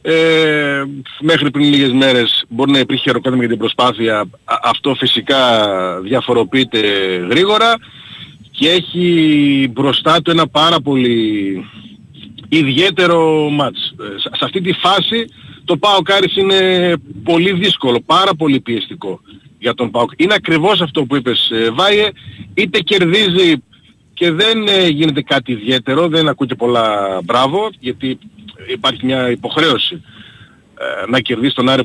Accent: native